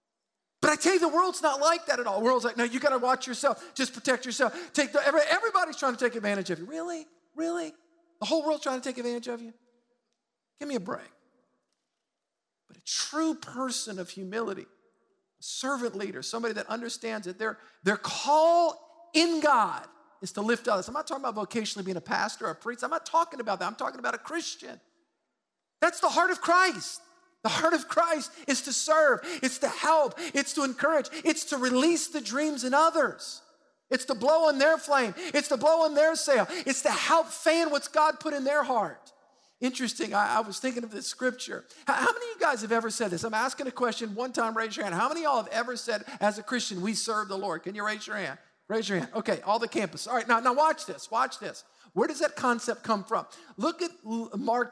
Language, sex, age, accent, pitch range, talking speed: English, male, 50-69, American, 225-315 Hz, 230 wpm